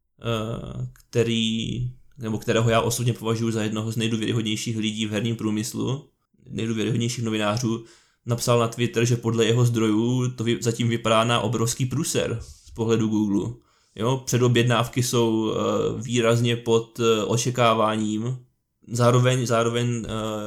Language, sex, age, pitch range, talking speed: Czech, male, 20-39, 115-120 Hz, 120 wpm